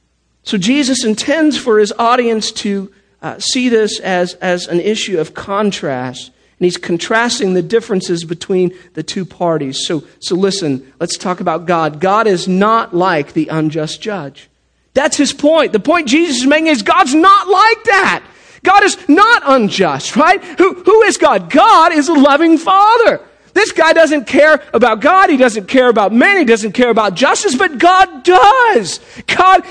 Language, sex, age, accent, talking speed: English, male, 40-59, American, 175 wpm